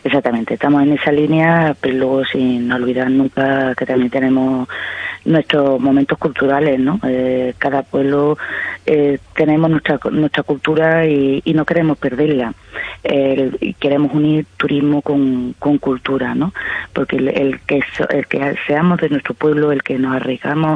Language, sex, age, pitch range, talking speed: Spanish, female, 20-39, 130-150 Hz, 155 wpm